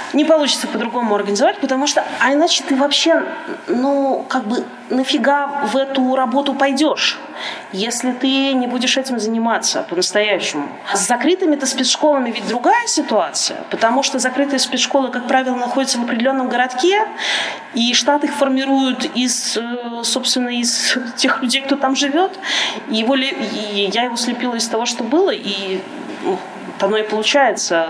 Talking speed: 140 wpm